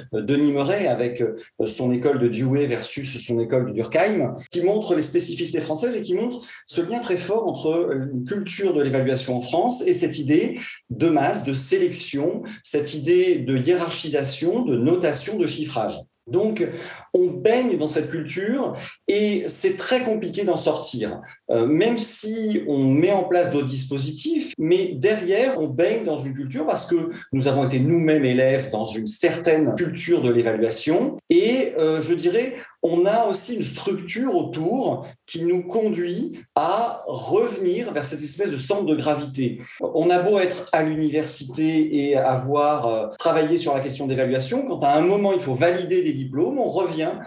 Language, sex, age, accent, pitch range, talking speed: French, male, 40-59, French, 145-205 Hz, 170 wpm